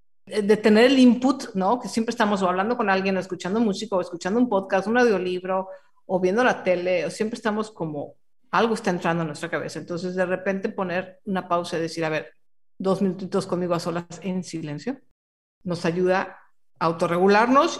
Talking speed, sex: 190 wpm, female